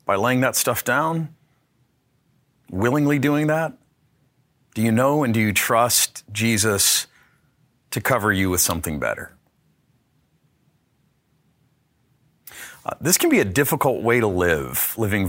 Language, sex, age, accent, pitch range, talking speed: English, male, 40-59, American, 95-125 Hz, 125 wpm